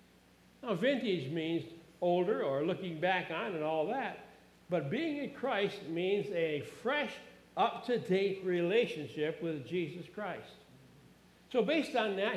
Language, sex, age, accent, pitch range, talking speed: English, male, 60-79, American, 165-215 Hz, 130 wpm